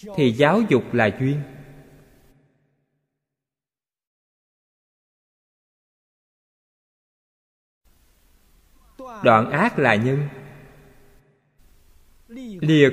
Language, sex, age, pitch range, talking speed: Vietnamese, male, 20-39, 135-180 Hz, 45 wpm